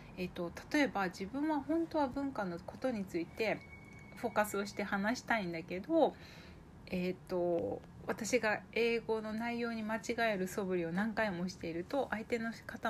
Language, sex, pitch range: Japanese, female, 180-250 Hz